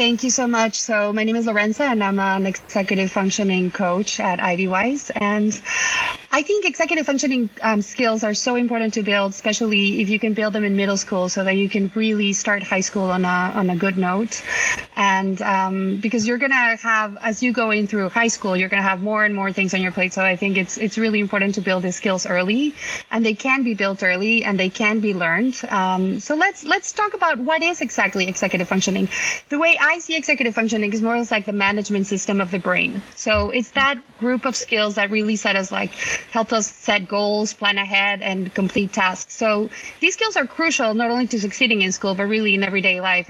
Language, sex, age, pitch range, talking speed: English, female, 20-39, 195-235 Hz, 225 wpm